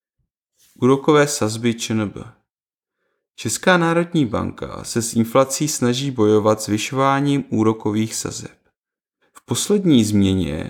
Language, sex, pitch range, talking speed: Czech, male, 105-130 Hz, 100 wpm